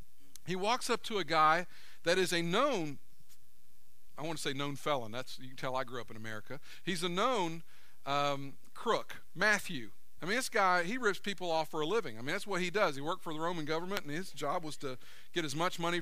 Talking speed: 235 wpm